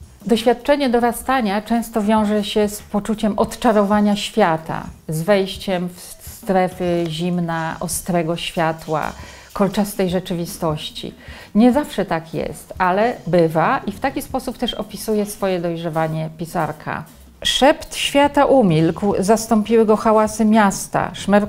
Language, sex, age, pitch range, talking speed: Polish, female, 40-59, 185-225 Hz, 115 wpm